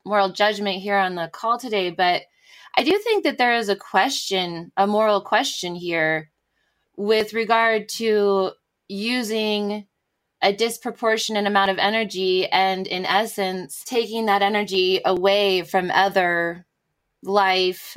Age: 20-39